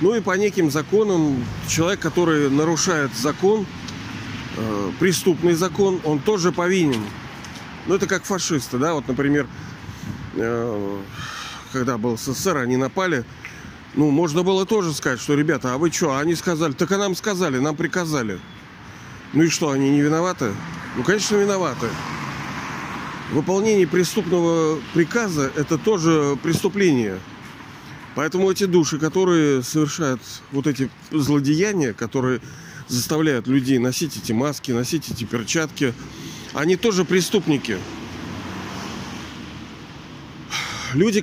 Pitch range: 135-180 Hz